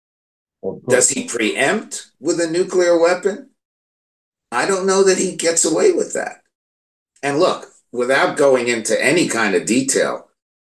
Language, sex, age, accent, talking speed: English, male, 60-79, American, 140 wpm